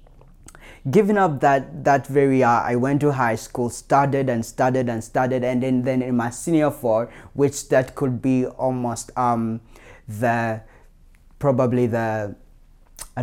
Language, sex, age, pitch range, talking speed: English, male, 20-39, 115-145 Hz, 150 wpm